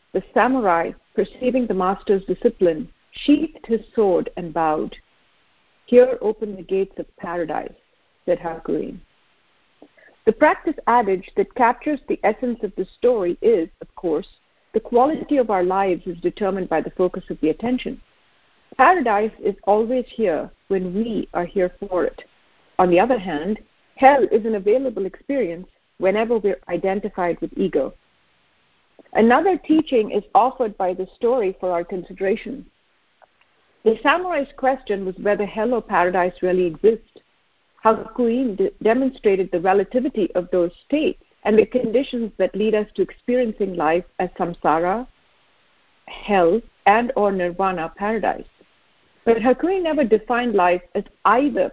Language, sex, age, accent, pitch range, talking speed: English, female, 50-69, Indian, 185-255 Hz, 140 wpm